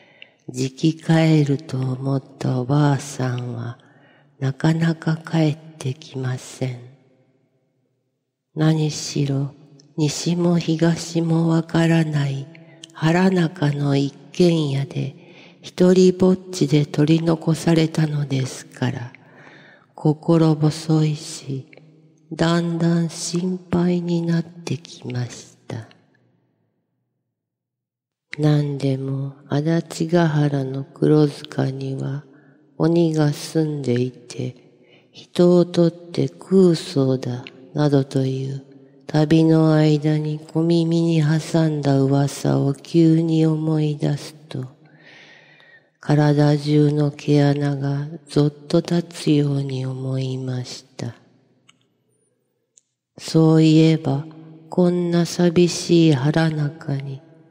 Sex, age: female, 40-59